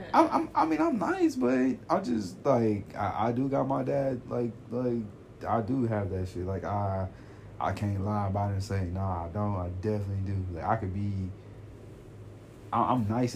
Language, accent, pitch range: English, American, 90-110 Hz